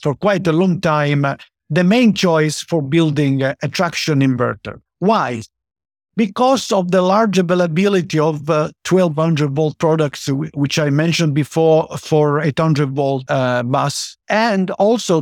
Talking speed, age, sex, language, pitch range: 140 wpm, 50-69, male, English, 145-180 Hz